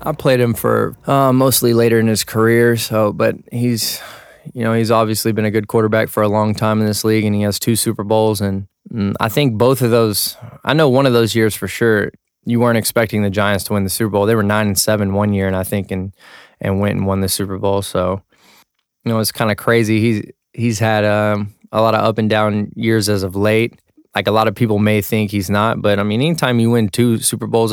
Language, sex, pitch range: English, male, 100-110 Hz